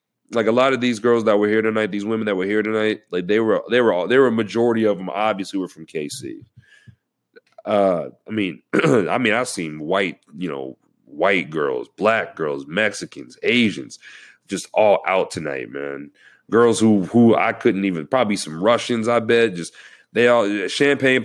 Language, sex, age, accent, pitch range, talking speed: English, male, 30-49, American, 100-125 Hz, 190 wpm